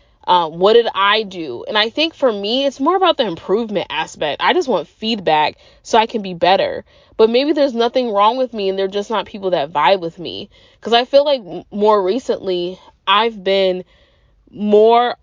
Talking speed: 195 wpm